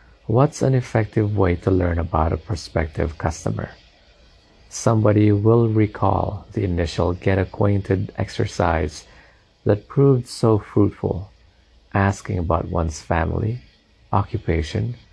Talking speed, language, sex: 105 wpm, English, male